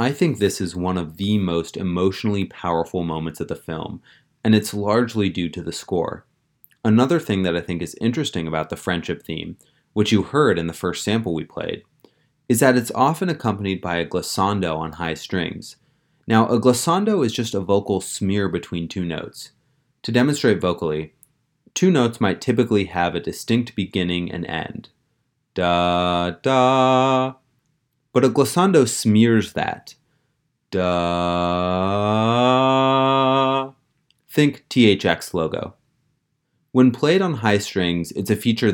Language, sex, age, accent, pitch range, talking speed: English, male, 30-49, American, 85-125 Hz, 145 wpm